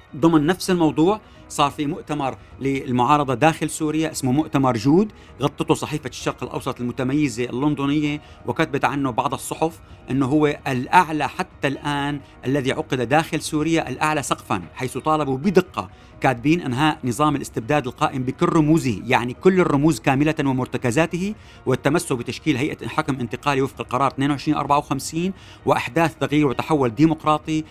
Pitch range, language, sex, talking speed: 125-155 Hz, Arabic, male, 130 wpm